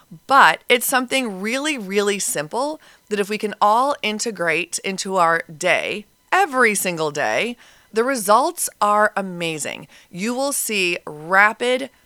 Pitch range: 175-245 Hz